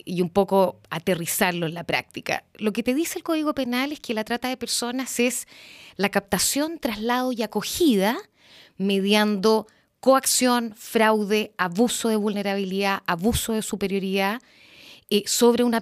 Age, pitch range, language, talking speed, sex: 30-49, 185-250 Hz, Spanish, 145 wpm, female